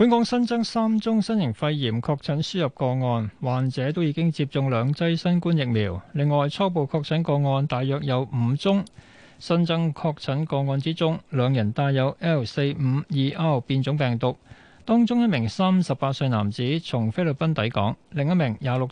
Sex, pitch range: male, 125-165 Hz